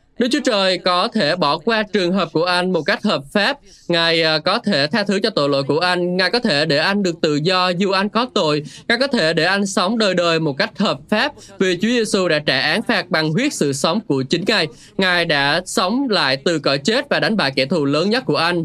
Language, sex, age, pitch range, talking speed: Vietnamese, male, 20-39, 150-210 Hz, 255 wpm